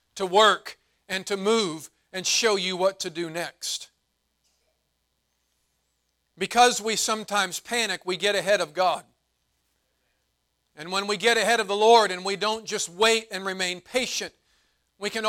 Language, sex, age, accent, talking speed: English, male, 40-59, American, 155 wpm